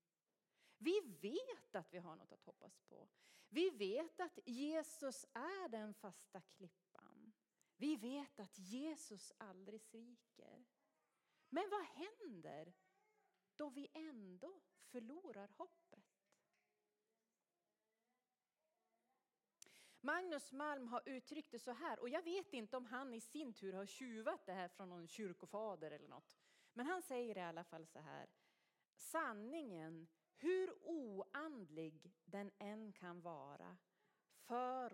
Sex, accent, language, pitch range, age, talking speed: female, native, Swedish, 195-300 Hz, 30-49, 125 wpm